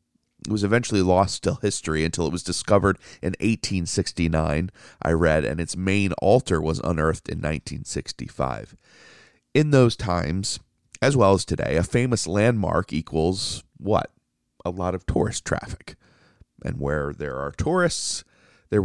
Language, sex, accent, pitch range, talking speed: English, male, American, 80-110 Hz, 145 wpm